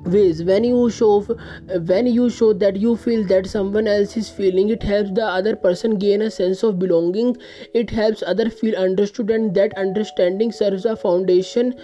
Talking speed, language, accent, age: 190 wpm, English, Indian, 20-39